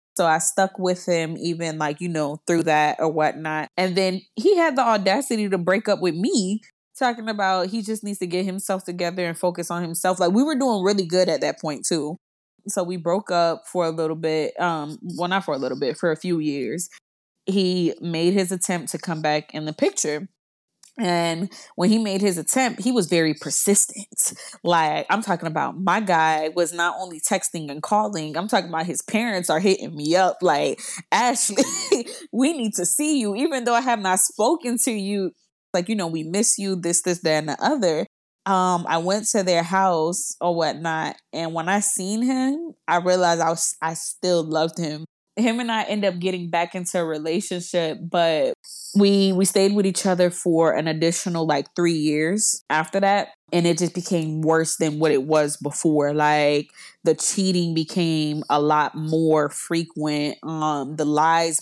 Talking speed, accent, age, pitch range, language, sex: 195 wpm, American, 20-39, 160-200 Hz, English, female